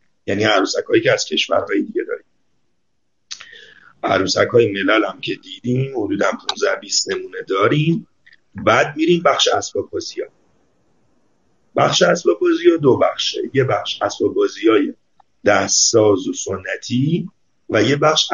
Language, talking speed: Persian, 120 wpm